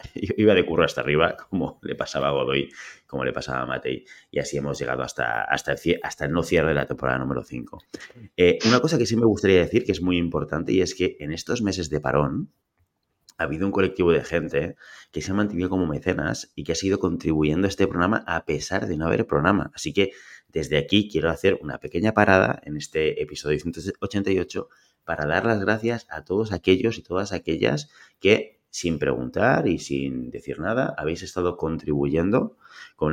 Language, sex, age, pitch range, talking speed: Spanish, male, 30-49, 70-95 Hz, 195 wpm